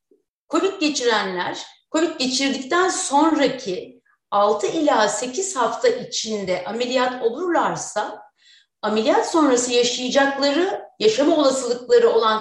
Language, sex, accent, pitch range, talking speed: Turkish, female, native, 235-320 Hz, 85 wpm